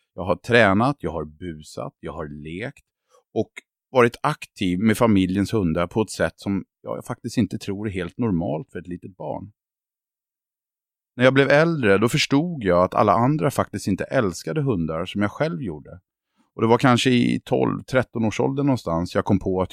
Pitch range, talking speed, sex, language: 90-120 Hz, 185 wpm, male, Swedish